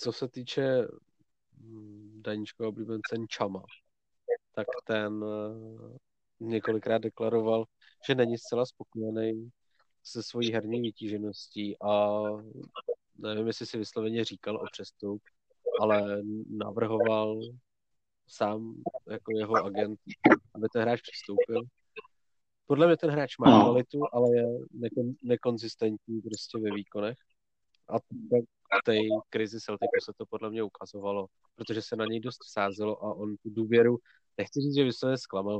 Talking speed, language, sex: 130 wpm, Czech, male